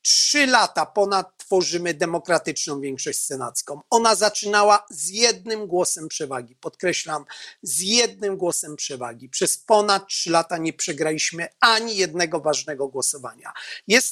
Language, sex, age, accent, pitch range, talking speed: Polish, male, 40-59, native, 155-210 Hz, 125 wpm